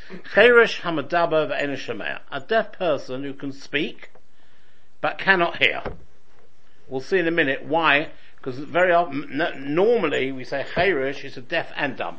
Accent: British